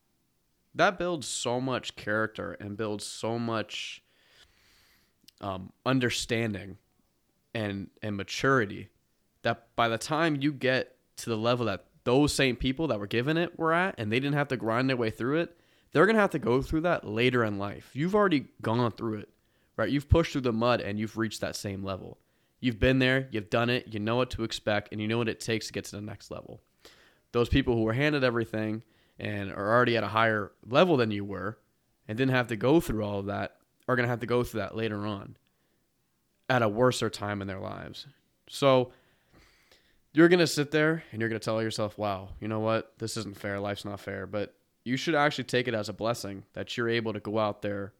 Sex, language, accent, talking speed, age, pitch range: male, English, American, 220 wpm, 20-39, 105-125 Hz